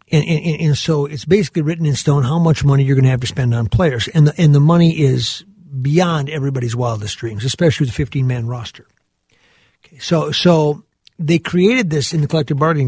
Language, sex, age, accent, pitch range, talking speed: English, male, 50-69, American, 135-180 Hz, 210 wpm